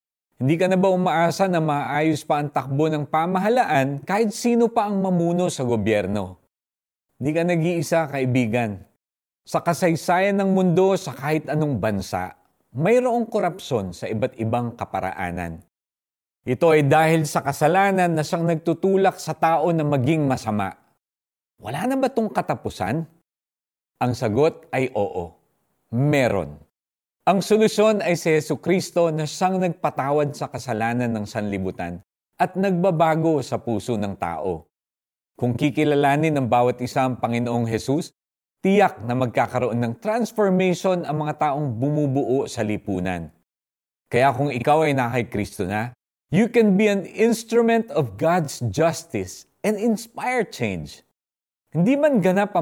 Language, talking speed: Filipino, 135 wpm